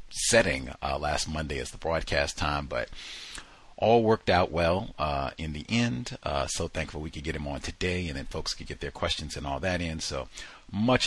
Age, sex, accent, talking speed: 40-59, male, American, 210 wpm